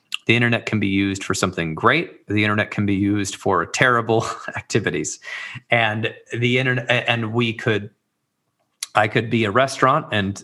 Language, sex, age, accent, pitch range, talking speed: English, male, 30-49, American, 100-120 Hz, 160 wpm